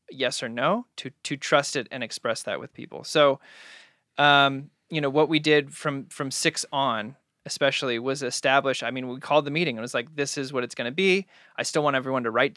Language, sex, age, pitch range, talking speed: English, male, 20-39, 125-145 Hz, 235 wpm